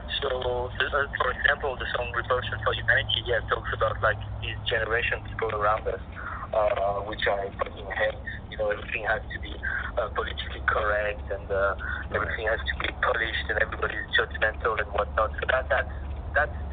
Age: 20-39